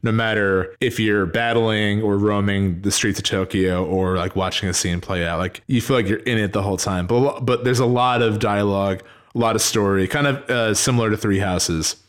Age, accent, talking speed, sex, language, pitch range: 20-39, American, 230 wpm, male, English, 95-115 Hz